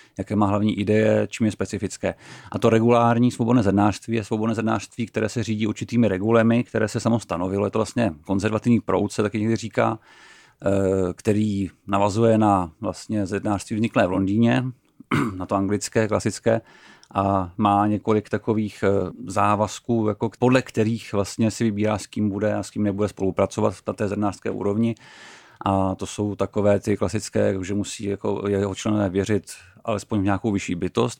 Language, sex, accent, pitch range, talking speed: Czech, male, native, 100-110 Hz, 160 wpm